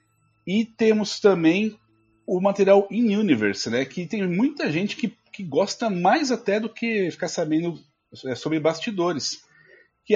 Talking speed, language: 130 wpm, Portuguese